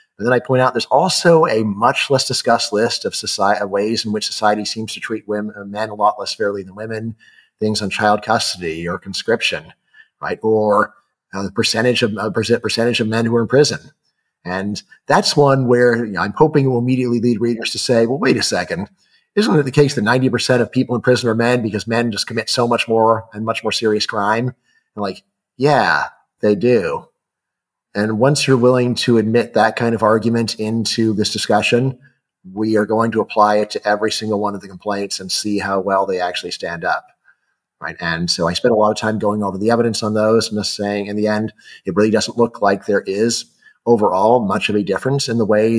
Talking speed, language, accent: 220 wpm, English, American